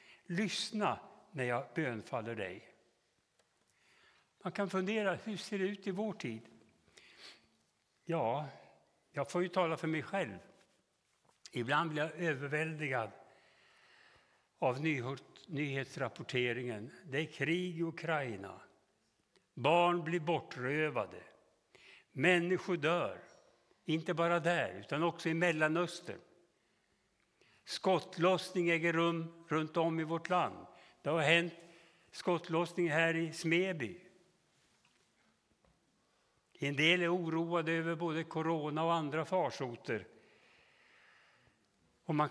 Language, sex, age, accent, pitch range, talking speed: Swedish, male, 60-79, Norwegian, 145-175 Hz, 105 wpm